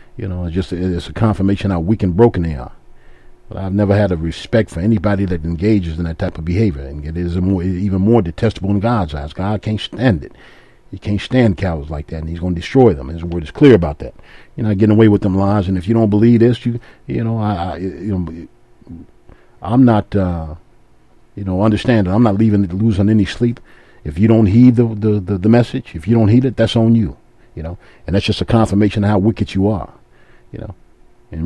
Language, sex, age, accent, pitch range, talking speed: English, male, 50-69, American, 90-115 Hz, 250 wpm